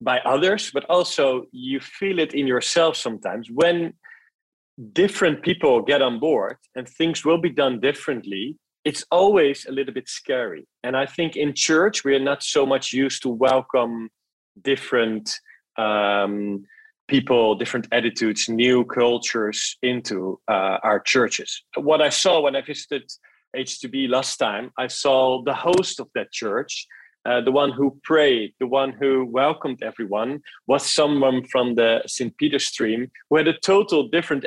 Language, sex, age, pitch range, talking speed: Dutch, male, 40-59, 125-150 Hz, 155 wpm